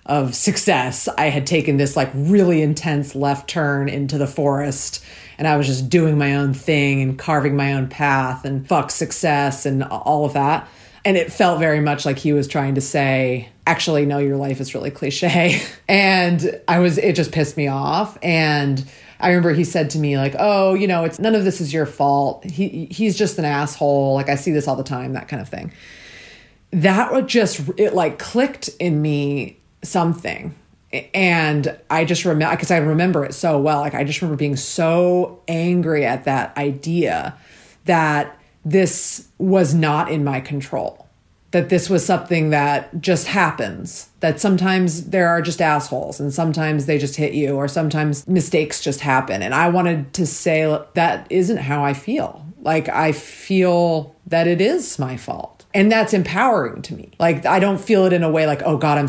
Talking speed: 190 wpm